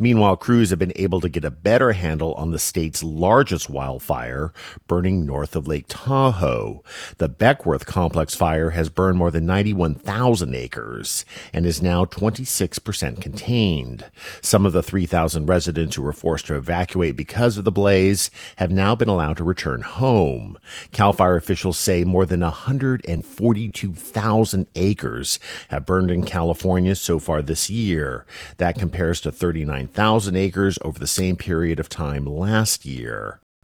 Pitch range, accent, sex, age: 85-110 Hz, American, male, 50-69